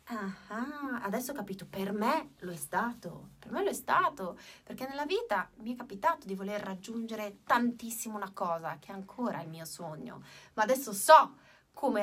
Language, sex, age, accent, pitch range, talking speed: Italian, female, 30-49, native, 200-335 Hz, 180 wpm